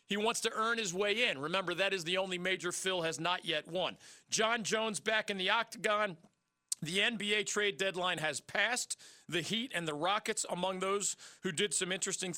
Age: 40-59